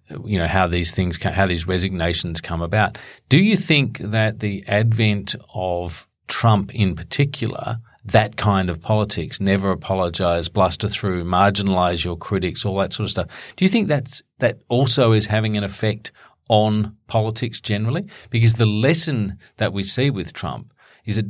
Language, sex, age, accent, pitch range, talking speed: English, male, 40-59, Australian, 95-115 Hz, 165 wpm